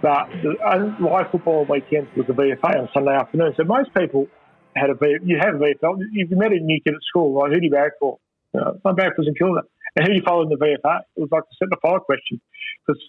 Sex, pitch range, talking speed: male, 130-175 Hz, 250 wpm